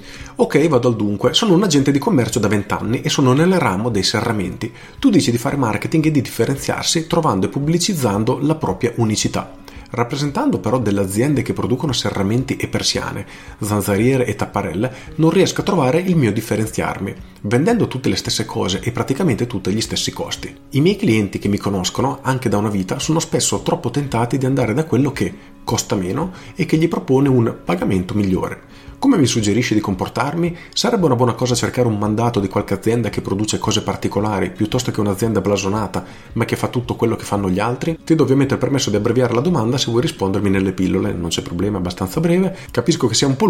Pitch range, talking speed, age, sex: 100-130 Hz, 205 wpm, 40-59, male